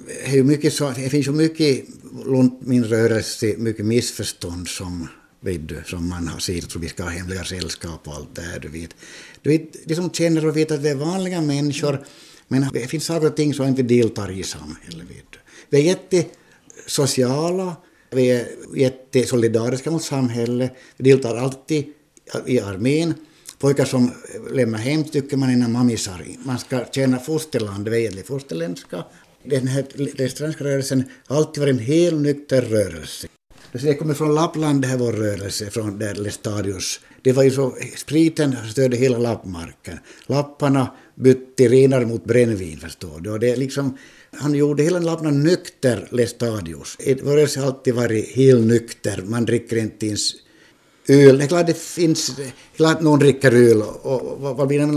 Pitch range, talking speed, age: 110-145 Hz, 165 wpm, 60-79